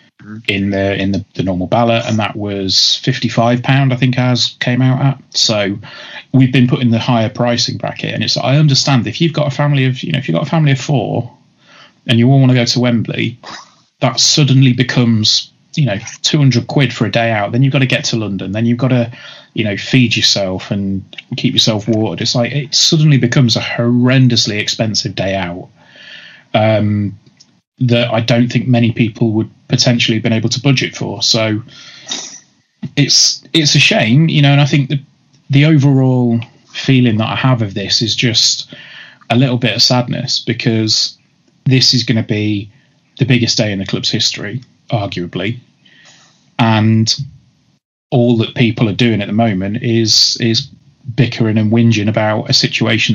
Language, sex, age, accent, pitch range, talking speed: English, male, 30-49, British, 110-135 Hz, 190 wpm